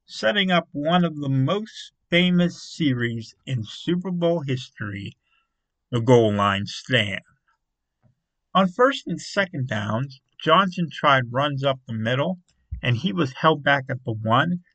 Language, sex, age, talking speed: English, male, 50-69, 140 wpm